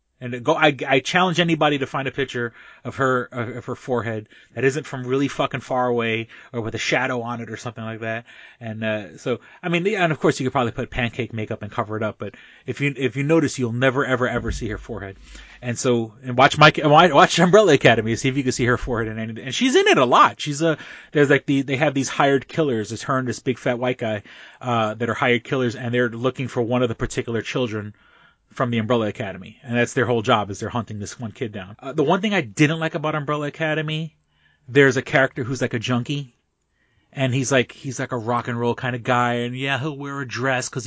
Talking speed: 250 wpm